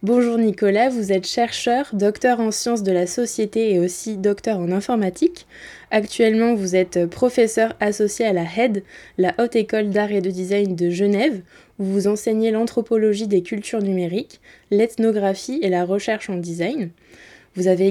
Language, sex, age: French, female, 20-39